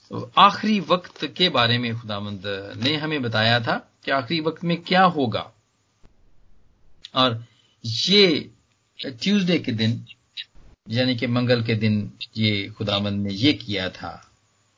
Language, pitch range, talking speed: Hindi, 110-175 Hz, 130 wpm